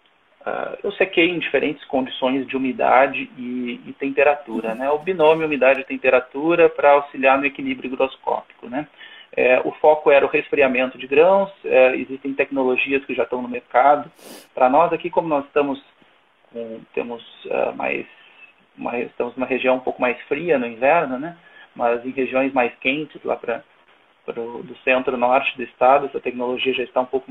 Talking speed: 165 wpm